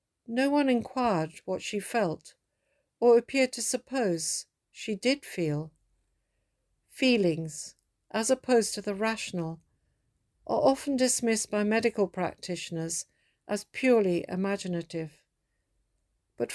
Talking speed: 105 wpm